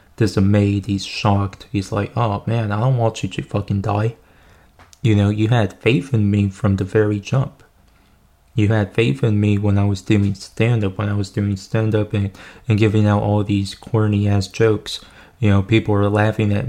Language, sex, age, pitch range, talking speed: English, male, 20-39, 100-115 Hz, 200 wpm